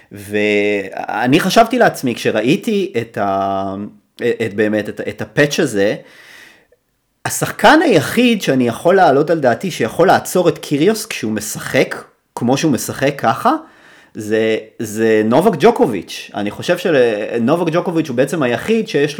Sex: male